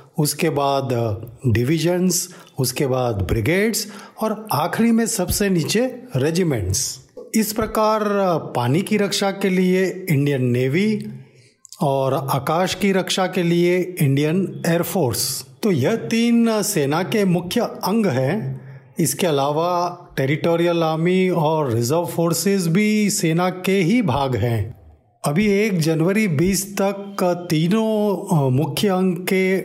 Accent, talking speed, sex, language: native, 120 wpm, male, Hindi